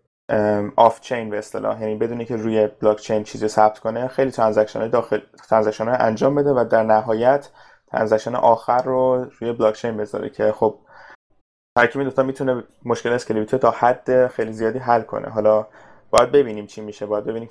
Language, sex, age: Persian, male, 20-39